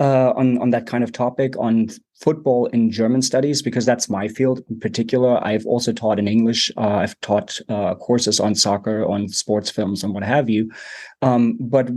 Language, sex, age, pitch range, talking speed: English, male, 30-49, 115-130 Hz, 195 wpm